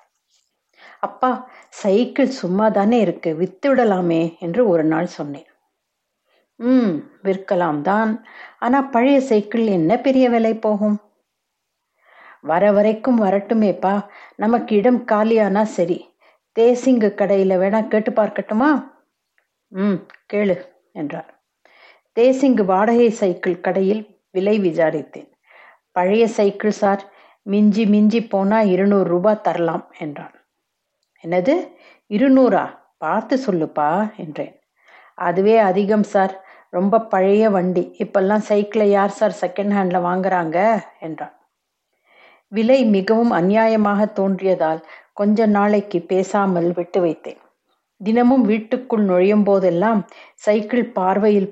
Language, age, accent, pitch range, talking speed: Tamil, 60-79, native, 185-225 Hz, 95 wpm